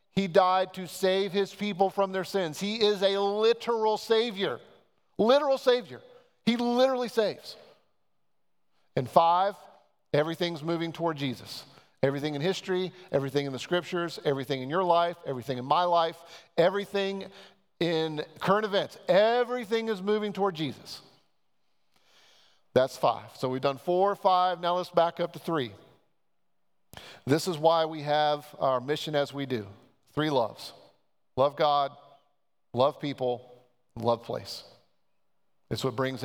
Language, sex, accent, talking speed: English, male, American, 135 wpm